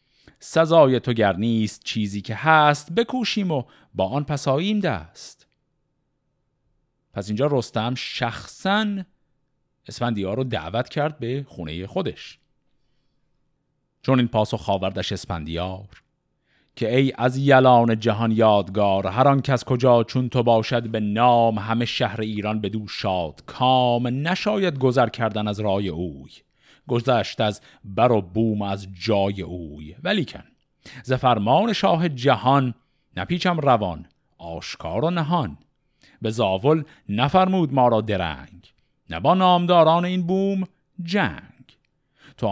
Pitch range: 105-150 Hz